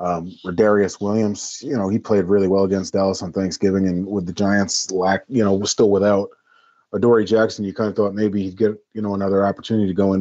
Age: 30-49